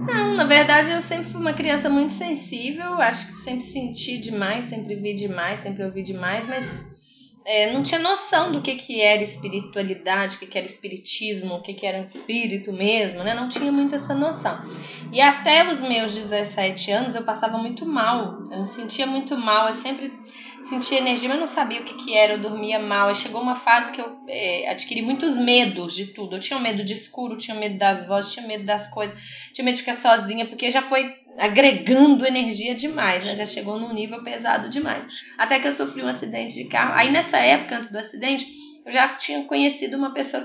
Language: English